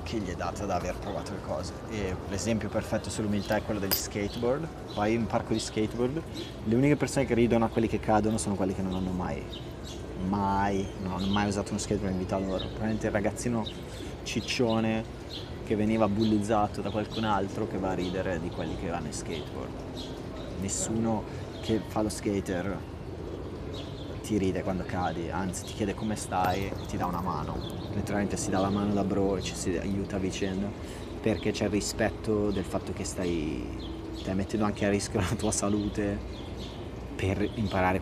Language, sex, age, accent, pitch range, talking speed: Italian, male, 30-49, native, 95-110 Hz, 185 wpm